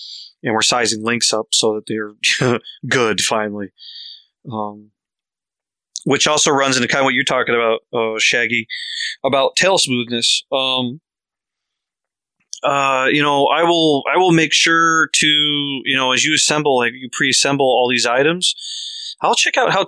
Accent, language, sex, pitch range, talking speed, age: American, English, male, 115-140 Hz, 155 wpm, 30-49